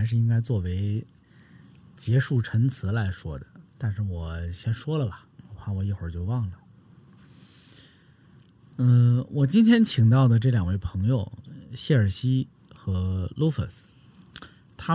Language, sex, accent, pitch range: Chinese, male, native, 100-140 Hz